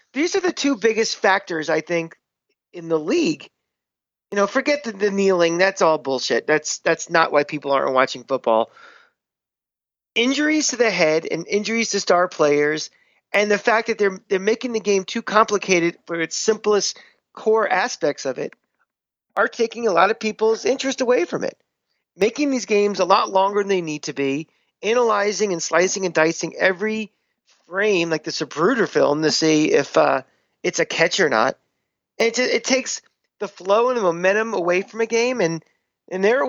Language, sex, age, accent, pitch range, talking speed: English, male, 40-59, American, 165-230 Hz, 185 wpm